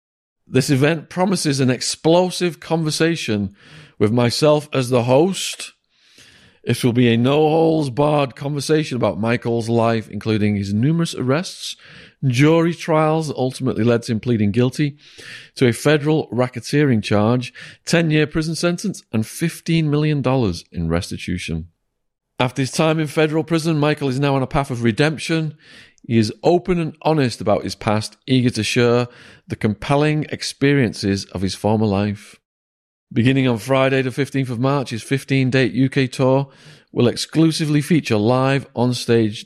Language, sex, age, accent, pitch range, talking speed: English, male, 40-59, British, 110-150 Hz, 145 wpm